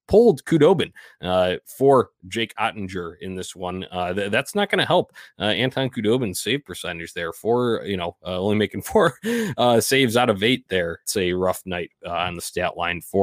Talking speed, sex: 205 wpm, male